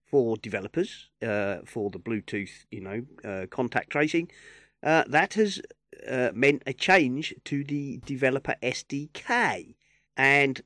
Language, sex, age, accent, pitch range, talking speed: English, male, 40-59, British, 115-170 Hz, 130 wpm